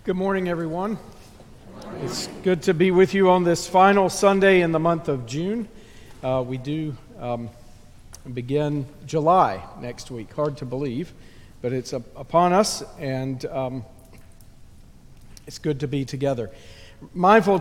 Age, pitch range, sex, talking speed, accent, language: 50-69, 125-165 Hz, male, 140 wpm, American, English